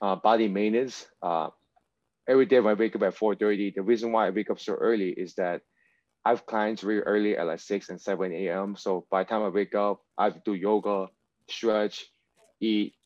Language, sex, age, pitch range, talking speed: English, male, 20-39, 100-115 Hz, 225 wpm